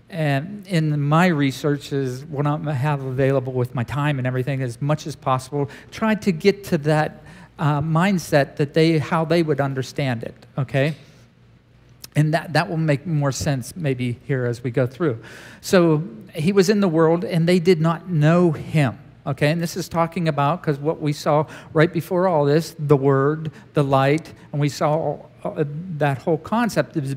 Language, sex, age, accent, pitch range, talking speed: English, male, 50-69, American, 145-185 Hz, 185 wpm